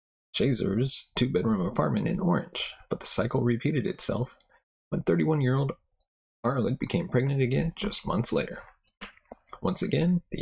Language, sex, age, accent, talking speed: English, male, 30-49, American, 125 wpm